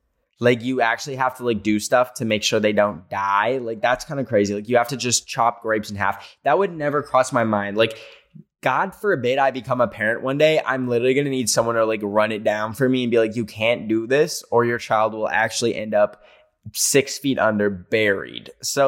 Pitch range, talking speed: 110-140 Hz, 235 wpm